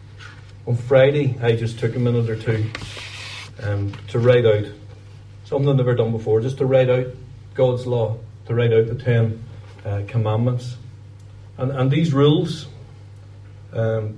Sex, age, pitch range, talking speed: male, 40-59, 105-135 Hz, 150 wpm